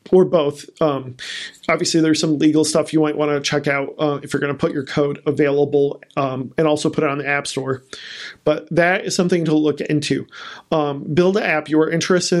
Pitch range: 145-175 Hz